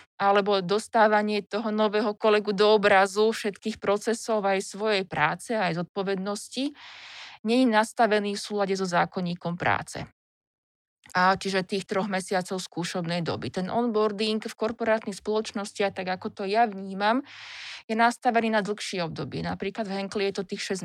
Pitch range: 190-215 Hz